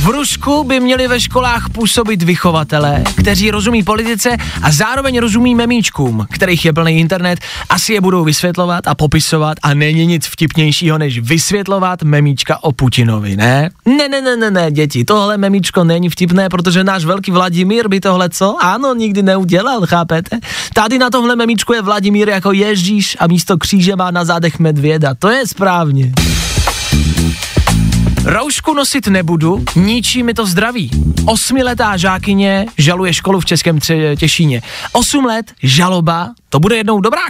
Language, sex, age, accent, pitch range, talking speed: Czech, male, 20-39, native, 155-205 Hz, 155 wpm